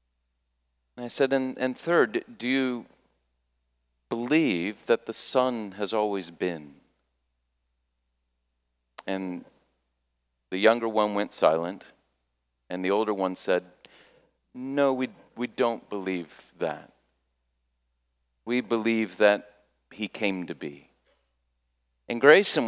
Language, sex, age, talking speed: English, male, 40-59, 110 wpm